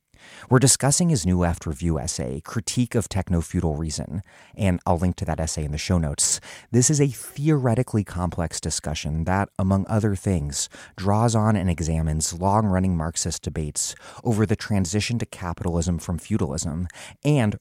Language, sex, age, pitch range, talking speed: English, male, 30-49, 80-110 Hz, 155 wpm